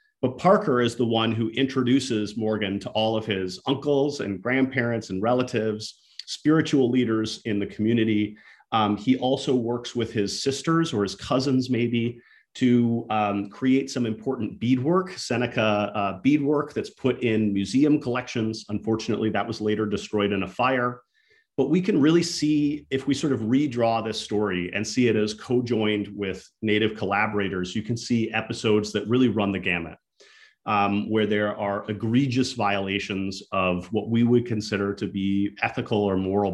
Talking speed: 165 wpm